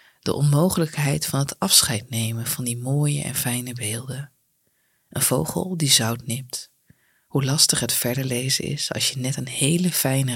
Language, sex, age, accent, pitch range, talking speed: Dutch, female, 20-39, Dutch, 130-165 Hz, 170 wpm